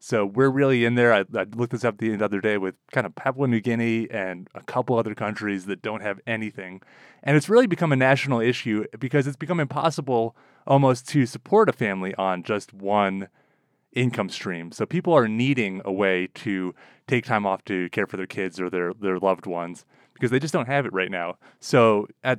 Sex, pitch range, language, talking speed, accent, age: male, 105-140 Hz, English, 210 wpm, American, 30-49